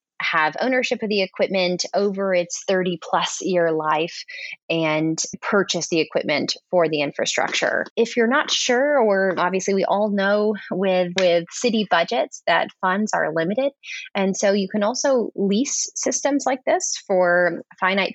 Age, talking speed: 20-39, 150 wpm